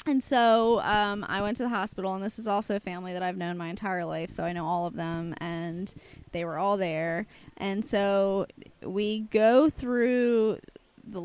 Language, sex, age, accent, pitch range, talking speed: English, female, 20-39, American, 180-235 Hz, 195 wpm